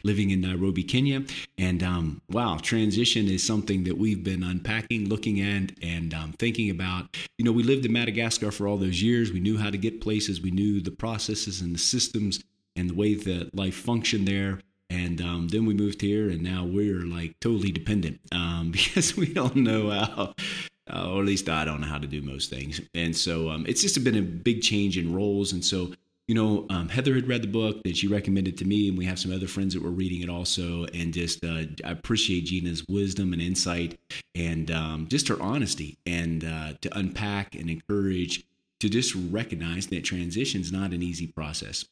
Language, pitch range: English, 85-105 Hz